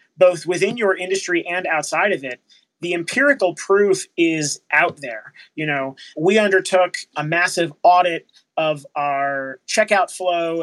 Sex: male